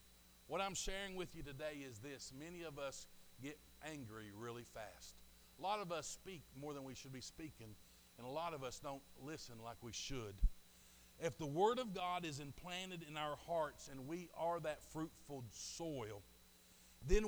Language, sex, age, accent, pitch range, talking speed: English, male, 50-69, American, 125-180 Hz, 185 wpm